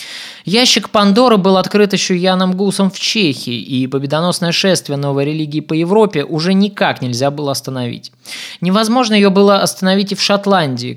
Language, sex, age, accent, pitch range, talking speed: Russian, male, 20-39, native, 155-200 Hz, 155 wpm